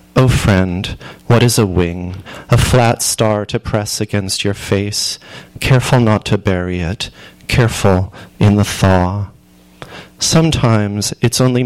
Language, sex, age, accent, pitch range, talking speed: English, male, 30-49, American, 95-115 Hz, 135 wpm